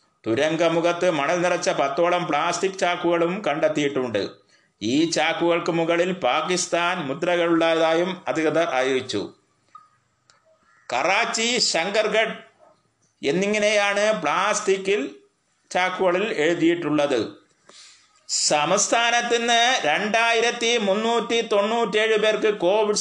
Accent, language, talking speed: native, Malayalam, 65 wpm